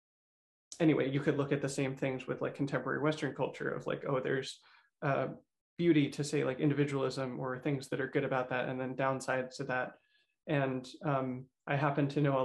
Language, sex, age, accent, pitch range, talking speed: English, male, 20-39, American, 130-150 Hz, 200 wpm